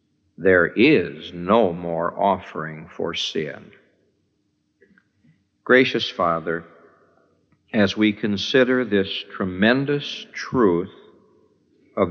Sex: male